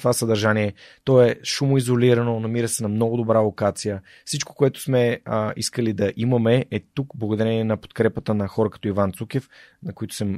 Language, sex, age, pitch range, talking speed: Bulgarian, male, 30-49, 105-130 Hz, 180 wpm